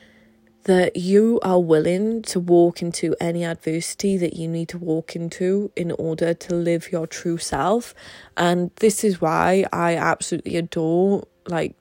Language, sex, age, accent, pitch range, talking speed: English, female, 20-39, British, 170-195 Hz, 150 wpm